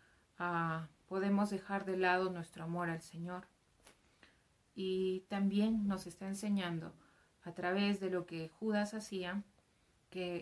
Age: 30-49